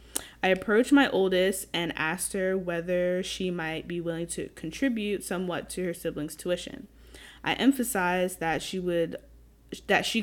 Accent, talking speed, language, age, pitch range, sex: American, 155 wpm, English, 10-29, 160-185 Hz, female